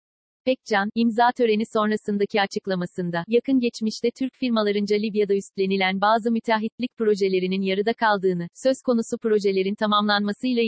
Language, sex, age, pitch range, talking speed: Turkish, female, 40-59, 200-230 Hz, 110 wpm